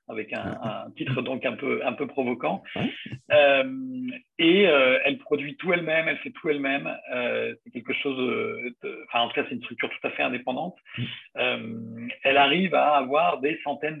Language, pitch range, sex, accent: French, 130-175 Hz, male, French